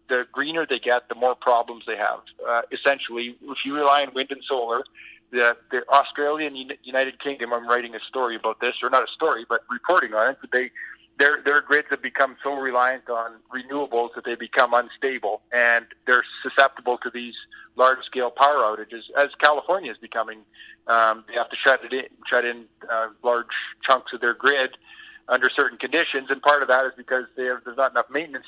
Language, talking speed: English, 200 wpm